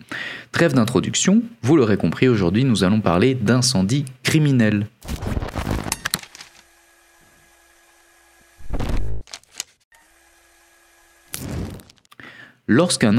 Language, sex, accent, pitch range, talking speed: French, male, French, 95-130 Hz, 55 wpm